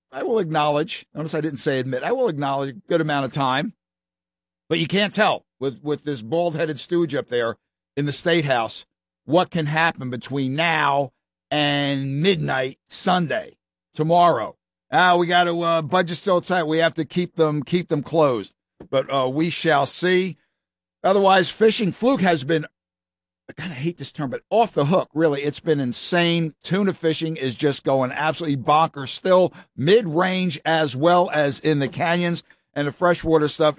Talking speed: 180 wpm